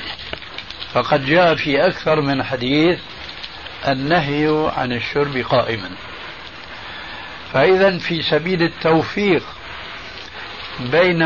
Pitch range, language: 135-170 Hz, Arabic